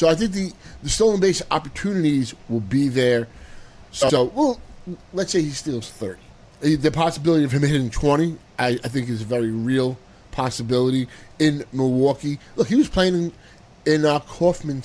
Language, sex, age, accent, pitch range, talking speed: English, male, 30-49, American, 125-170 Hz, 170 wpm